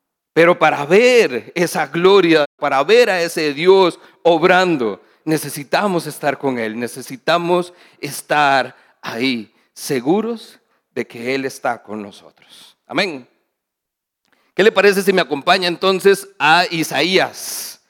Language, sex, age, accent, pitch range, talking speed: Spanish, male, 40-59, Mexican, 155-205 Hz, 115 wpm